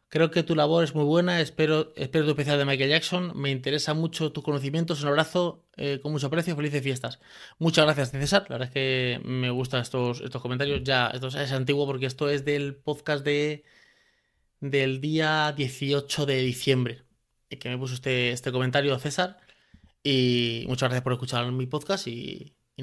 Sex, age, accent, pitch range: male, 20-39, Spanish, 130-155 Hz